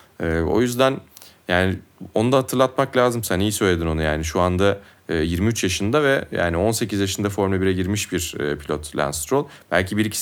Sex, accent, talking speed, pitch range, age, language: male, native, 170 wpm, 90-120 Hz, 30-49, Turkish